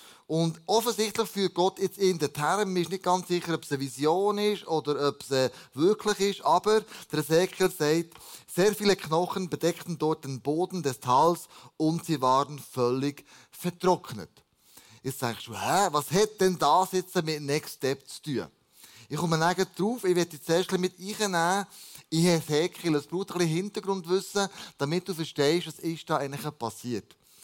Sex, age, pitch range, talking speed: male, 20-39, 150-195 Hz, 175 wpm